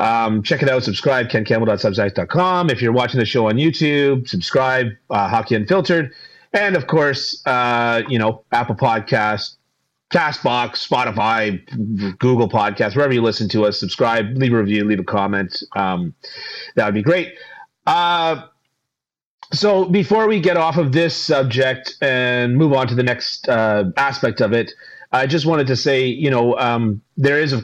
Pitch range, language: 110-140 Hz, English